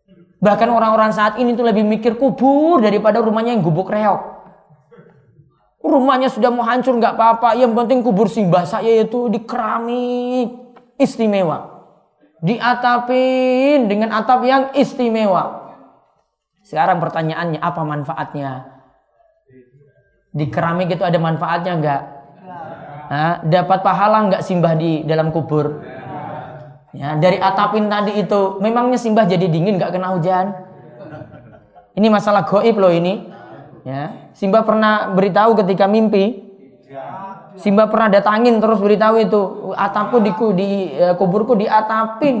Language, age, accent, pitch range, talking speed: Indonesian, 20-39, native, 170-230 Hz, 115 wpm